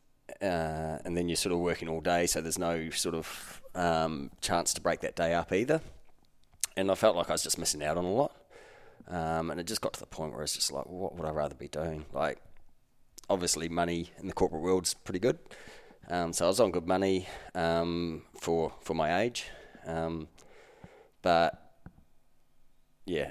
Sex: male